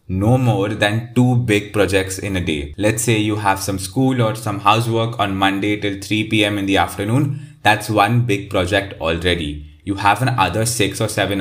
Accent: Indian